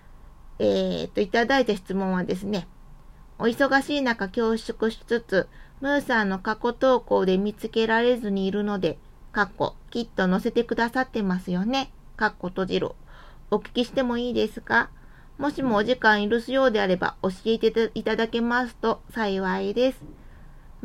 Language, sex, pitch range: Japanese, female, 200-250 Hz